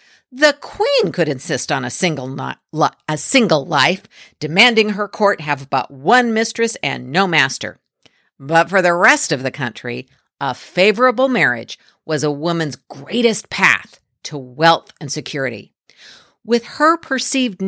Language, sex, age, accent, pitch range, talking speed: English, female, 50-69, American, 145-215 Hz, 145 wpm